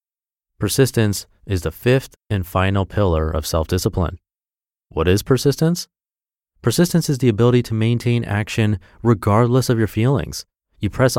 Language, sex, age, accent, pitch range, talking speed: English, male, 30-49, American, 90-120 Hz, 135 wpm